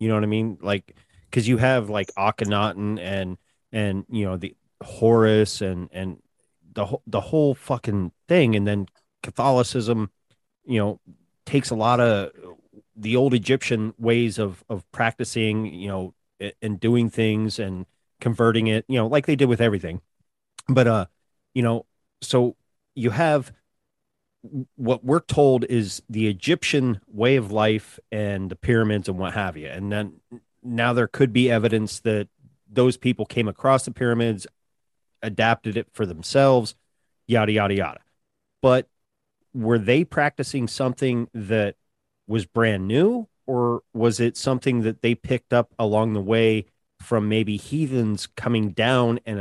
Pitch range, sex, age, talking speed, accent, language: 105-125 Hz, male, 30-49, 150 wpm, American, English